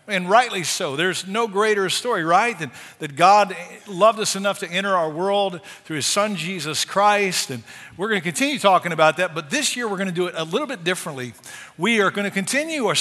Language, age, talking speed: English, 50-69, 225 wpm